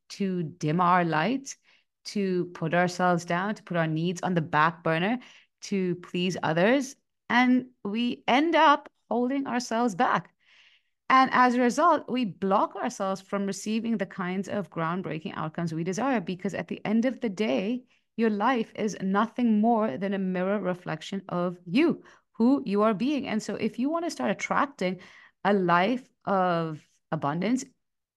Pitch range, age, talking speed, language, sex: 170-235 Hz, 30-49, 160 wpm, English, female